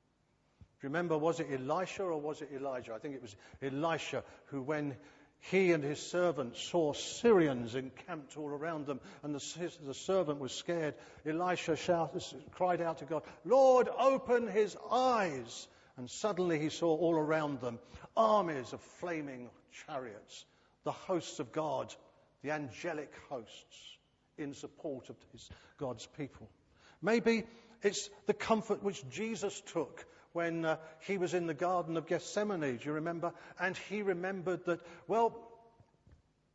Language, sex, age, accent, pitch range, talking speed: English, male, 50-69, British, 140-190 Hz, 150 wpm